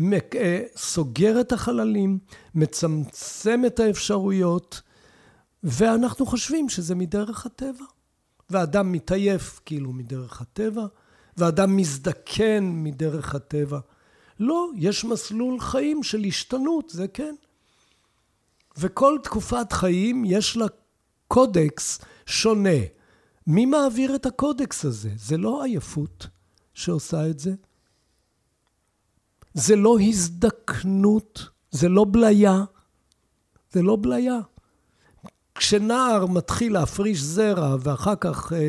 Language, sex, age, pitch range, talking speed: Hebrew, male, 60-79, 165-235 Hz, 95 wpm